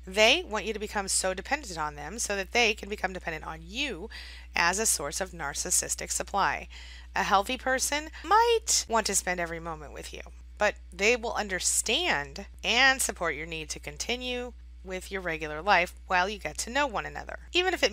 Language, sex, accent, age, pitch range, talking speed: English, female, American, 30-49, 165-230 Hz, 195 wpm